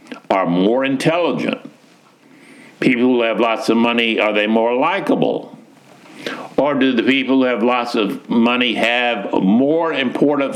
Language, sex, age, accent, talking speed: English, male, 60-79, American, 140 wpm